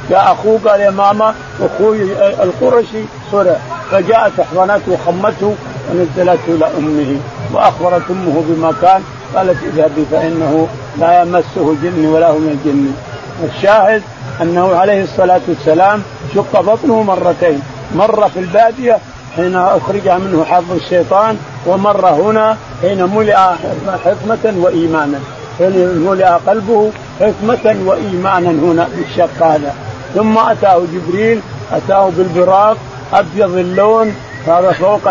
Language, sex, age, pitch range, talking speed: Arabic, male, 50-69, 160-200 Hz, 110 wpm